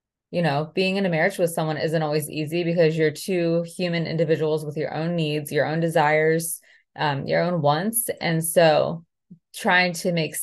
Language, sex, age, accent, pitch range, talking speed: English, female, 20-39, American, 155-175 Hz, 185 wpm